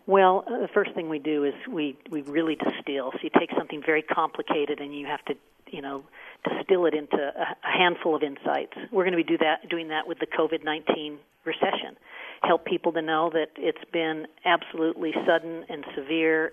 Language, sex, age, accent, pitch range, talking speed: English, female, 50-69, American, 155-185 Hz, 190 wpm